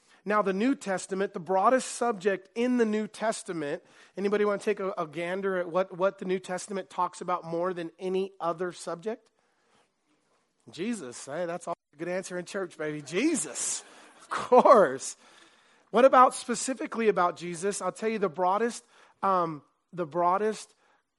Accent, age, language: American, 30-49, English